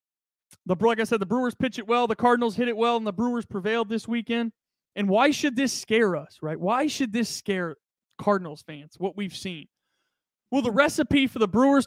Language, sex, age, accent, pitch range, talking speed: English, male, 30-49, American, 185-240 Hz, 205 wpm